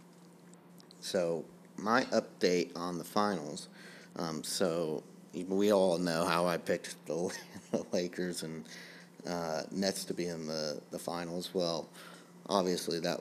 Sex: male